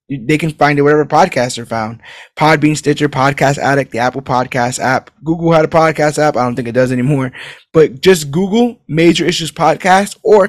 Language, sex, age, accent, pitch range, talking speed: English, male, 20-39, American, 125-155 Hz, 195 wpm